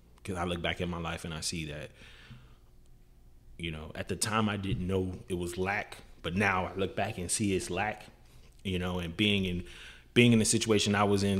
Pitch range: 85-100 Hz